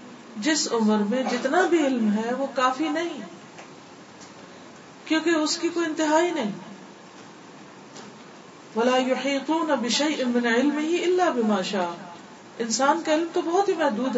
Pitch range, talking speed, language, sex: 215-285 Hz, 105 wpm, Urdu, female